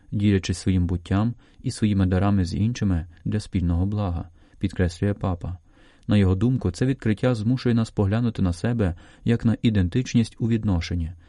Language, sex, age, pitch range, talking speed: Ukrainian, male, 30-49, 95-110 Hz, 155 wpm